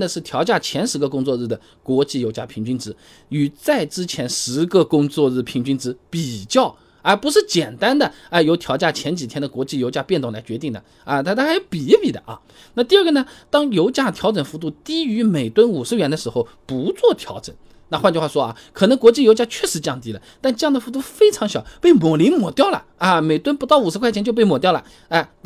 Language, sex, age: Chinese, male, 20-39